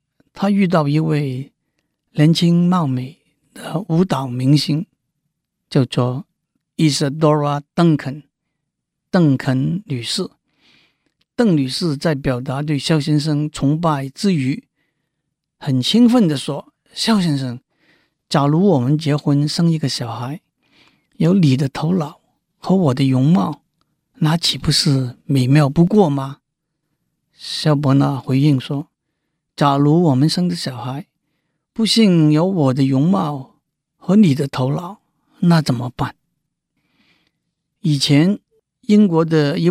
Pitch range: 145-175 Hz